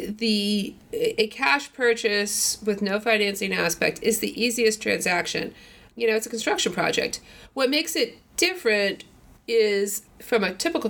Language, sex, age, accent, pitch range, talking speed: English, female, 30-49, American, 180-225 Hz, 145 wpm